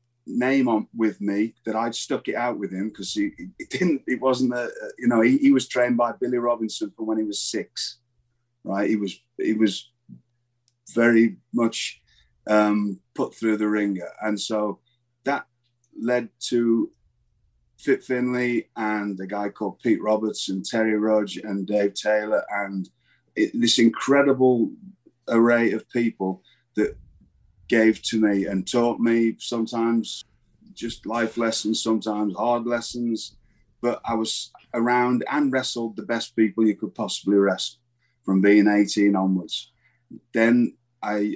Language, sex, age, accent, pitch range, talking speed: English, male, 30-49, British, 105-120 Hz, 150 wpm